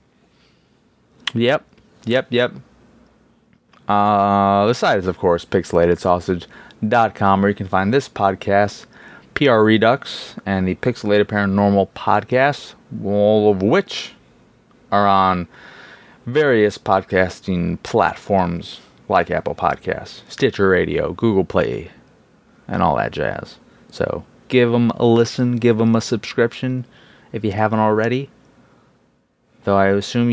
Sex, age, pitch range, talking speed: male, 30-49, 95-125 Hz, 115 wpm